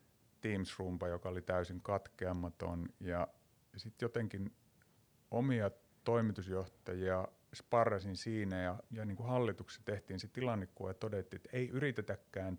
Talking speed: 110 wpm